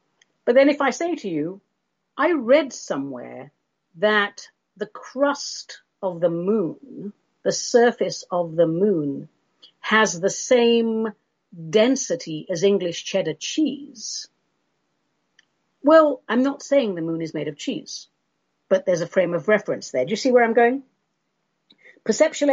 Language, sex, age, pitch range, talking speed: English, female, 50-69, 175-245 Hz, 140 wpm